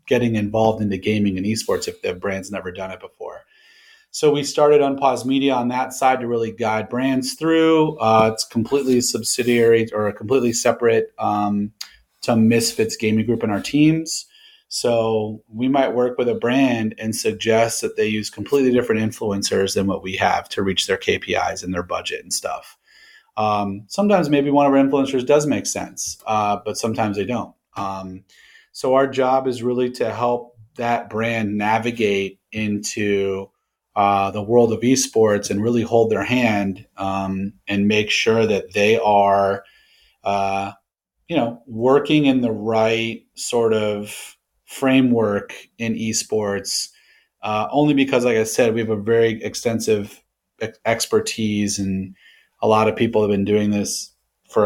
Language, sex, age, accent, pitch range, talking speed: English, male, 30-49, American, 105-130 Hz, 165 wpm